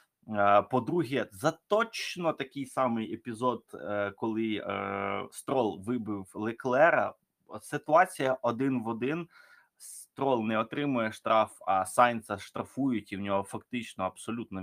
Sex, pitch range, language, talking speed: male, 95-125 Hz, Ukrainian, 105 wpm